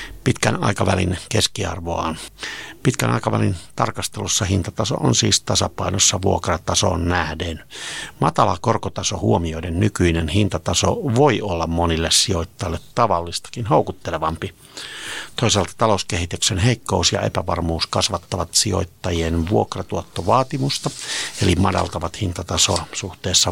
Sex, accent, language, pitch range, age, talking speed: male, native, Finnish, 85-105 Hz, 60-79, 90 wpm